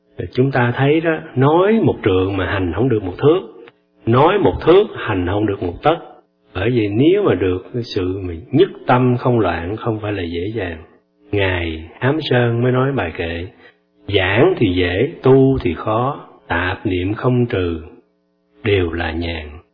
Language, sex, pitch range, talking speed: Vietnamese, male, 85-120 Hz, 175 wpm